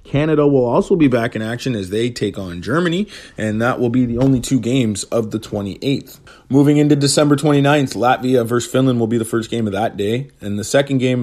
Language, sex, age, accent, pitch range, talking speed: English, male, 30-49, American, 105-135 Hz, 225 wpm